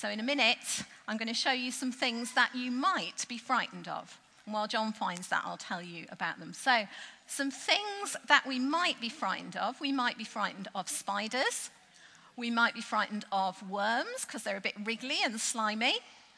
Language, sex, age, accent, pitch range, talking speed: English, female, 50-69, British, 225-305 Hz, 200 wpm